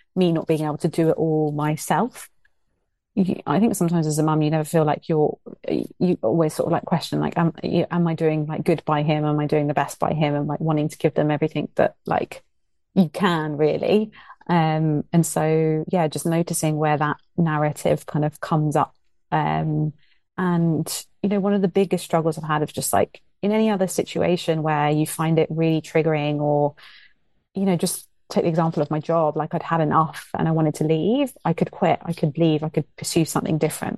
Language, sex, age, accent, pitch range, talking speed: English, female, 30-49, British, 155-175 Hz, 215 wpm